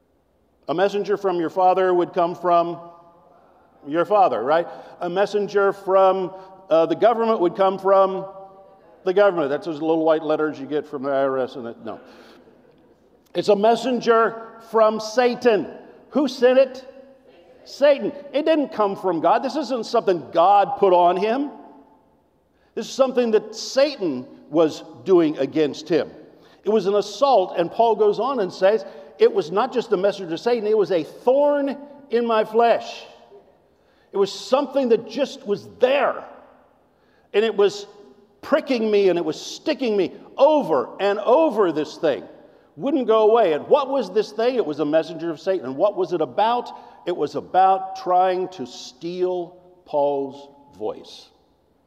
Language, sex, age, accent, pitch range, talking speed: English, male, 50-69, American, 175-230 Hz, 160 wpm